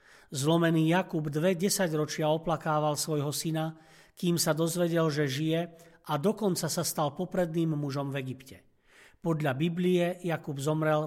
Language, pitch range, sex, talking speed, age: Slovak, 145-175 Hz, male, 130 wpm, 40-59